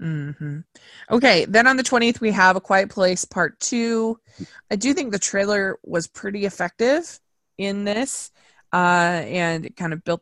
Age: 20-39